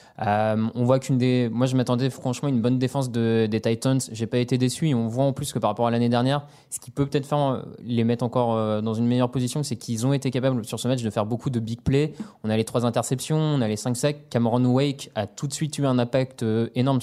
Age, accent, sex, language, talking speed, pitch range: 20-39, French, male, French, 280 wpm, 115-140 Hz